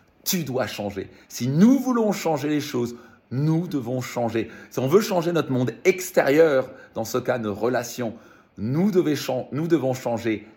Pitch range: 110-150 Hz